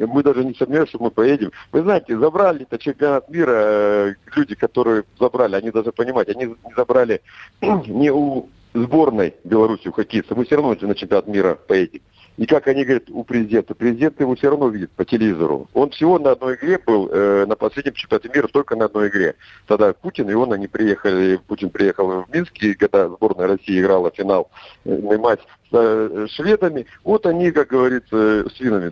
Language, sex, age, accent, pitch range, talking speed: Russian, male, 50-69, native, 105-145 Hz, 185 wpm